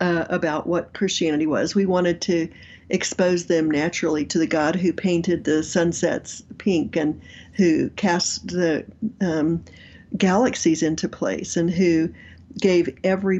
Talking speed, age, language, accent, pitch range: 140 wpm, 50-69, English, American, 170-195 Hz